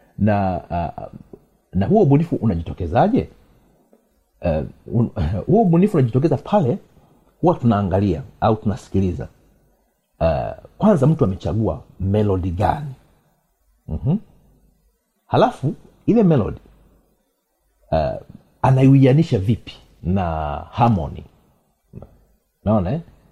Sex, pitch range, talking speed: male, 95-135 Hz, 75 wpm